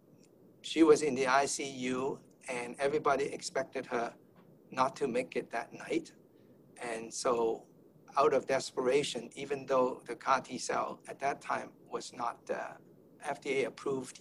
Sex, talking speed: male, 135 wpm